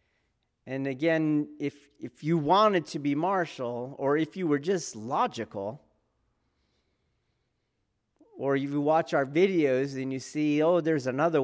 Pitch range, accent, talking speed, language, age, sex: 110-150 Hz, American, 140 wpm, English, 40-59, male